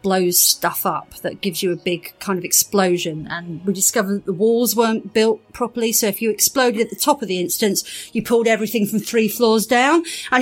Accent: British